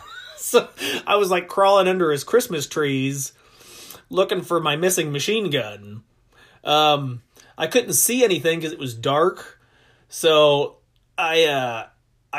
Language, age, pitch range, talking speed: English, 30-49, 135-180 Hz, 130 wpm